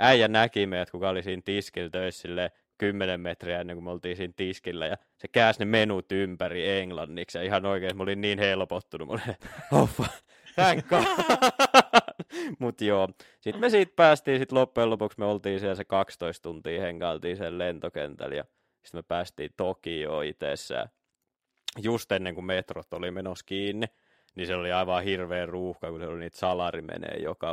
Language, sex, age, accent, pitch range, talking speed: Finnish, male, 20-39, native, 90-105 Hz, 170 wpm